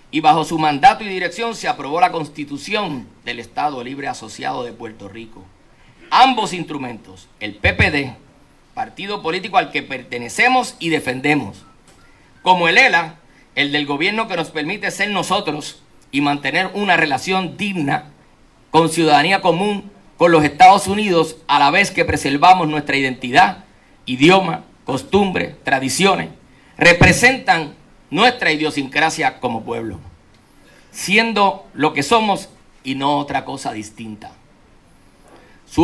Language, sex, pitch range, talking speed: Spanish, male, 135-185 Hz, 125 wpm